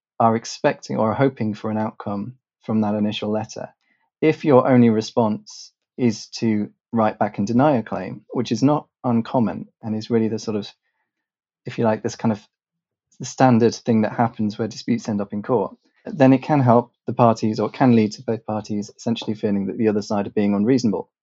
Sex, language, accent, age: male, English, British, 20-39